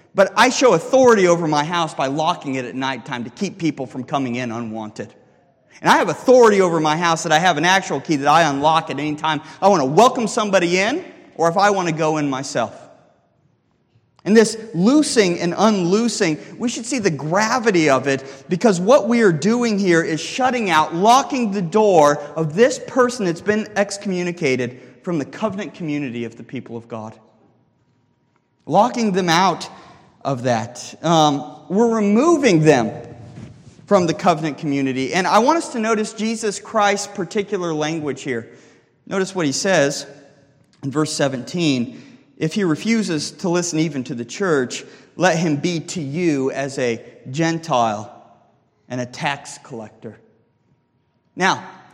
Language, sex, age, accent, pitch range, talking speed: English, male, 30-49, American, 140-205 Hz, 165 wpm